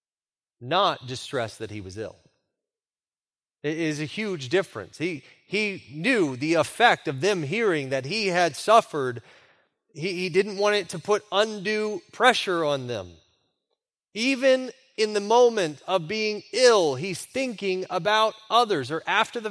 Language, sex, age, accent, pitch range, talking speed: English, male, 30-49, American, 145-215 Hz, 150 wpm